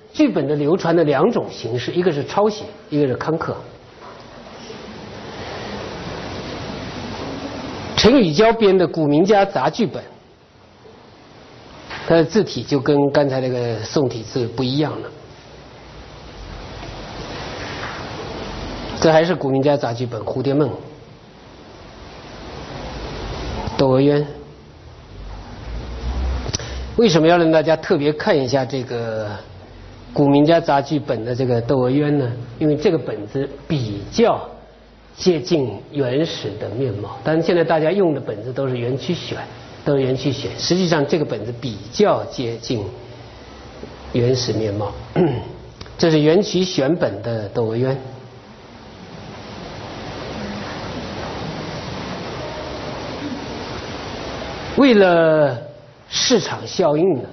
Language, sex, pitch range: Chinese, male, 120-160 Hz